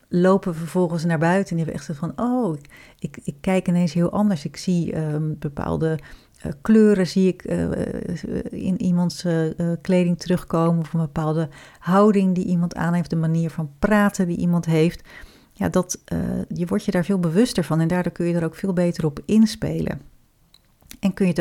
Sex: female